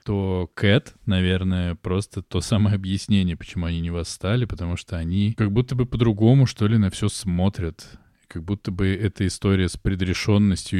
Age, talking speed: 20-39, 165 wpm